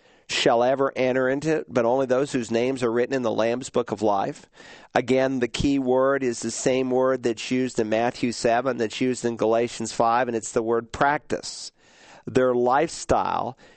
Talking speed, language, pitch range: 190 wpm, English, 115-130 Hz